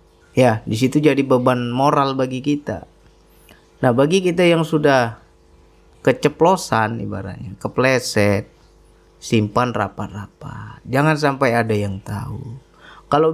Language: Indonesian